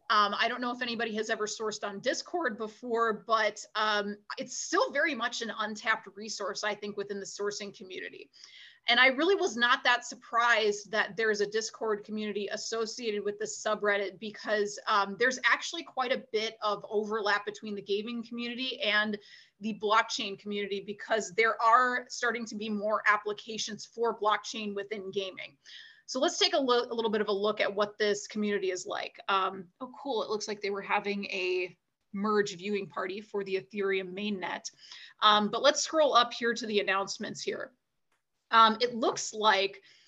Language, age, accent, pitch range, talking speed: English, 30-49, American, 205-235 Hz, 180 wpm